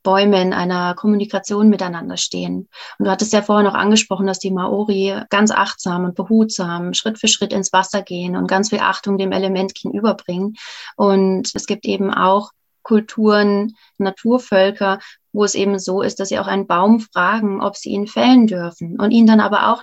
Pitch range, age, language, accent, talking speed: 190-220 Hz, 30-49, German, German, 180 wpm